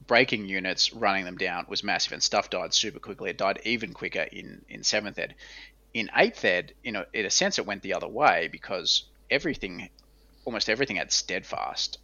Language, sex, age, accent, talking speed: English, male, 20-39, Australian, 195 wpm